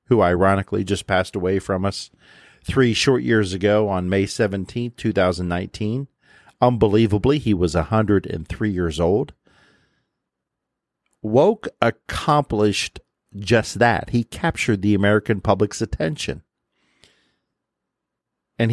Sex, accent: male, American